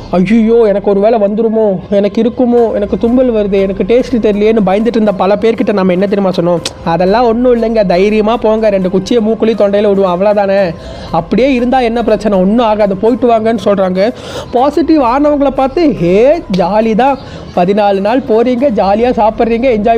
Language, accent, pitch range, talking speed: Tamil, native, 205-270 Hz, 155 wpm